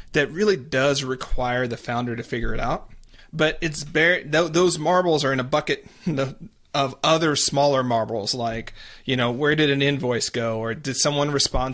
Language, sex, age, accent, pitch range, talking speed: English, male, 30-49, American, 130-160 Hz, 180 wpm